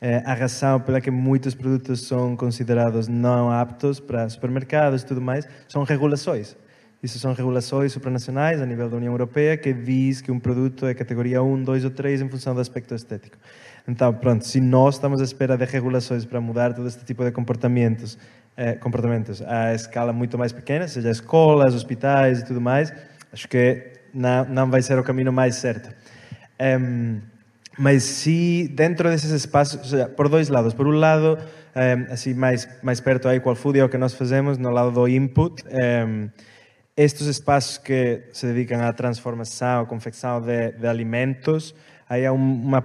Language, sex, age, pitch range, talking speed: Portuguese, male, 20-39, 120-135 Hz, 175 wpm